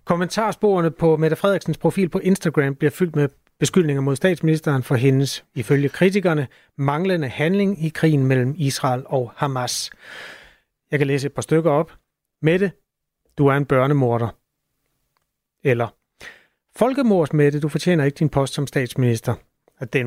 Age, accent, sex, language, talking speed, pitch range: 30-49, native, male, Danish, 150 wpm, 130-165 Hz